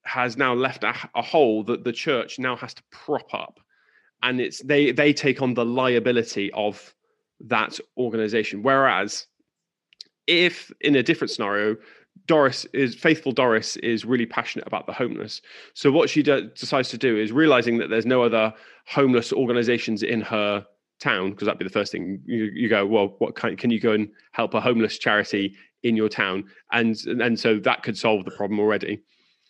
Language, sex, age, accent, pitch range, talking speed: English, male, 20-39, British, 110-140 Hz, 180 wpm